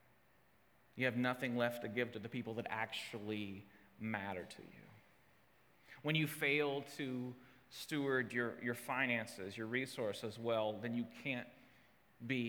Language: English